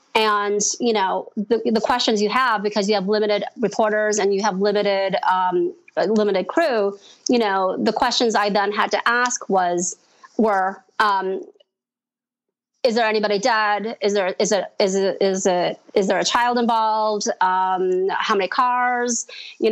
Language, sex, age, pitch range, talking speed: English, female, 30-49, 195-230 Hz, 165 wpm